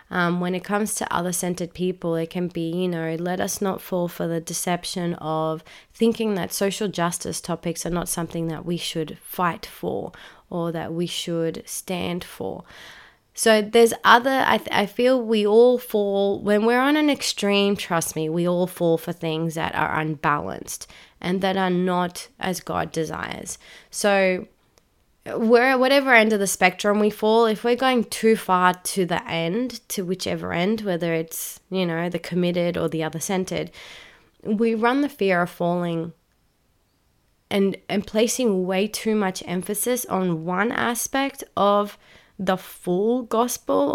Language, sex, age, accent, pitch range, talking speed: English, female, 20-39, Australian, 170-215 Hz, 165 wpm